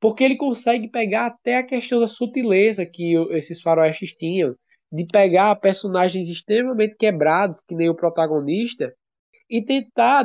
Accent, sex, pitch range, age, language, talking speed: Brazilian, male, 160-220 Hz, 20-39, Portuguese, 140 wpm